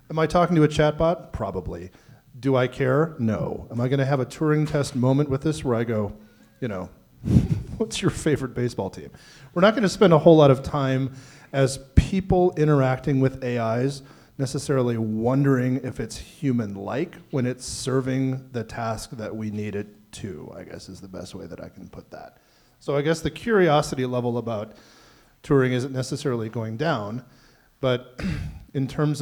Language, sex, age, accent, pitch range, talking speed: English, male, 40-59, American, 110-140 Hz, 175 wpm